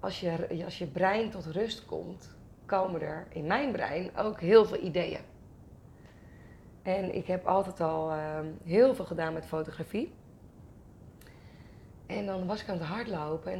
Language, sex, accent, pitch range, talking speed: Dutch, female, Dutch, 160-195 Hz, 160 wpm